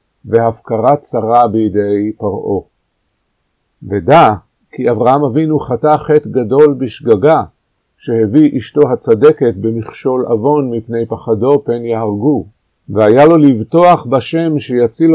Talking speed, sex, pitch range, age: 105 wpm, male, 115-150 Hz, 50-69